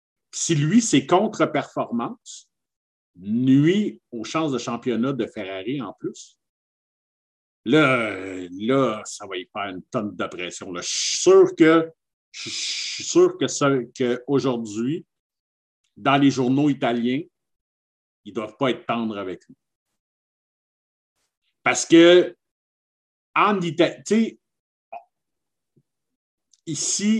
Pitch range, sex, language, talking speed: 105-160 Hz, male, French, 105 wpm